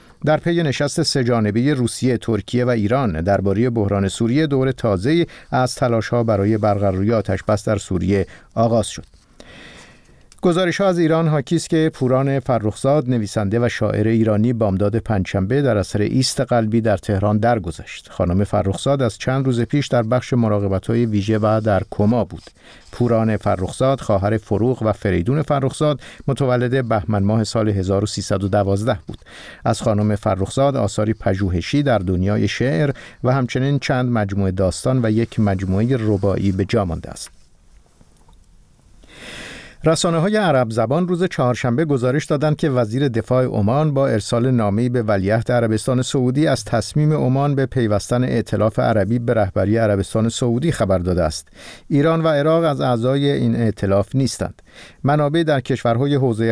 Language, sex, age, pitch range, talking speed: Persian, male, 50-69, 105-135 Hz, 140 wpm